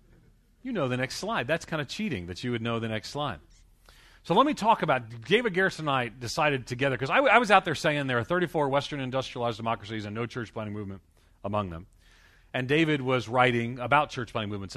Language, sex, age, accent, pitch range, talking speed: English, male, 40-59, American, 105-145 Hz, 225 wpm